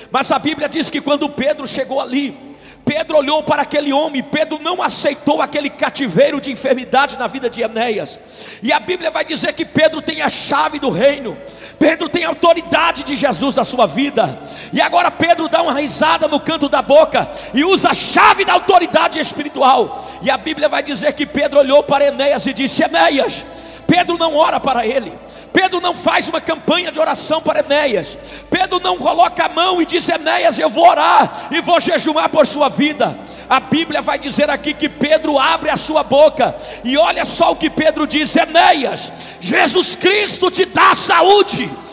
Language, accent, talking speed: Portuguese, Brazilian, 185 wpm